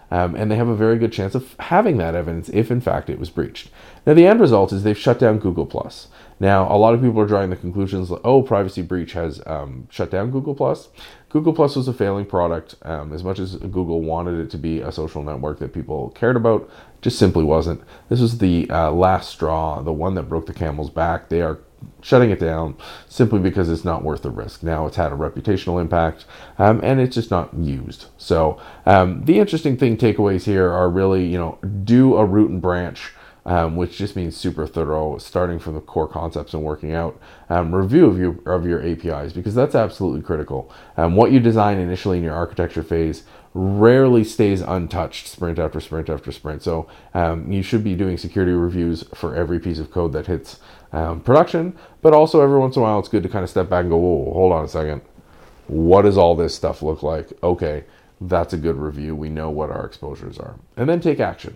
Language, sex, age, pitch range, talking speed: English, male, 40-59, 80-105 Hz, 220 wpm